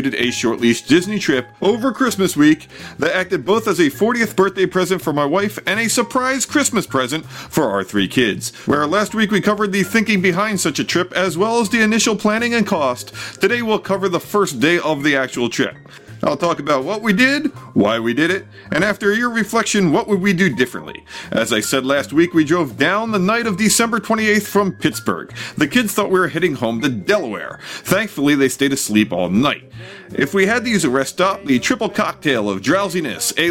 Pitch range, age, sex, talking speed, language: 160-210 Hz, 40-59, male, 215 wpm, English